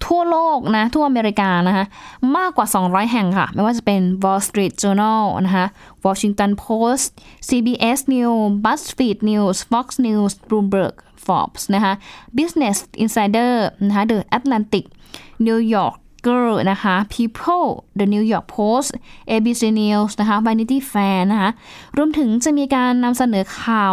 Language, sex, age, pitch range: Thai, female, 10-29, 200-250 Hz